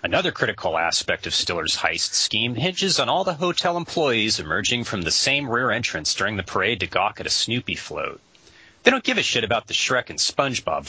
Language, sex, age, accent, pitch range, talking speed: English, male, 30-49, American, 95-140 Hz, 210 wpm